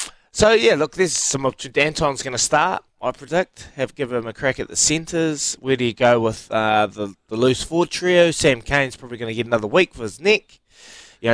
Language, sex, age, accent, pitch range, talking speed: English, male, 20-39, Australian, 110-140 Hz, 230 wpm